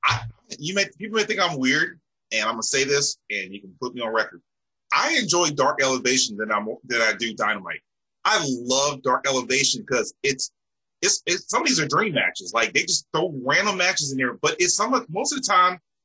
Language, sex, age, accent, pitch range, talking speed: English, male, 30-49, American, 125-180 Hz, 225 wpm